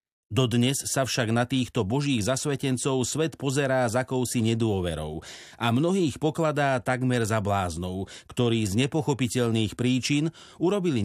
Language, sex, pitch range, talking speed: Slovak, male, 110-140 Hz, 125 wpm